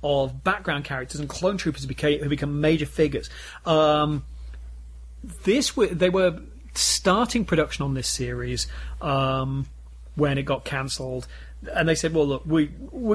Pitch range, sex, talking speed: 130-160 Hz, male, 145 wpm